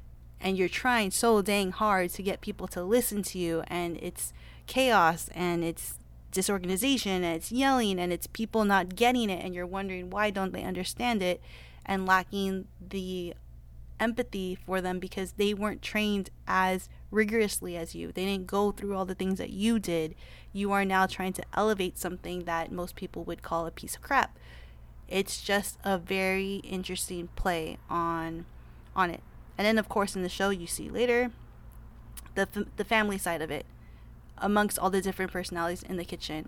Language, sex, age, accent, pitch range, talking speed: English, female, 20-39, American, 165-195 Hz, 180 wpm